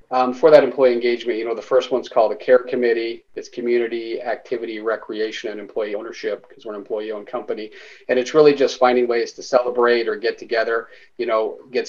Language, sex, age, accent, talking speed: English, male, 40-59, American, 200 wpm